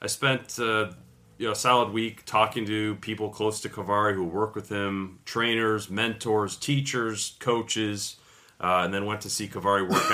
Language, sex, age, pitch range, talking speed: English, male, 30-49, 85-105 Hz, 180 wpm